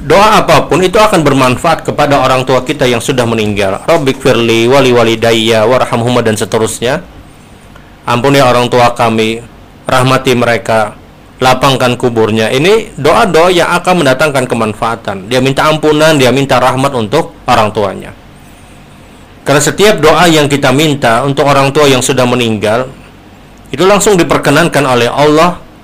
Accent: native